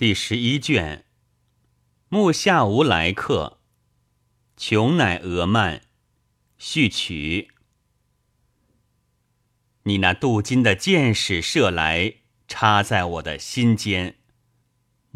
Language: Chinese